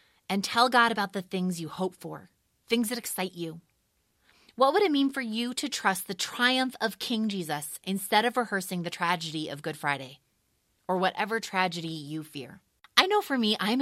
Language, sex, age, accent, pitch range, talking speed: English, female, 30-49, American, 155-195 Hz, 190 wpm